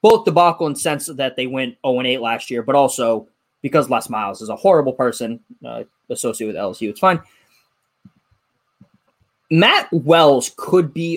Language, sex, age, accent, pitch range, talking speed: English, male, 20-39, American, 145-220 Hz, 160 wpm